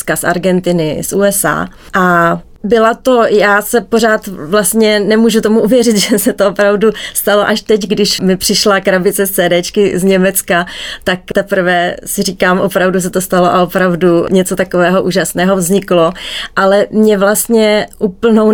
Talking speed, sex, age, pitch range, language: 150 wpm, female, 30-49, 190-215 Hz, Czech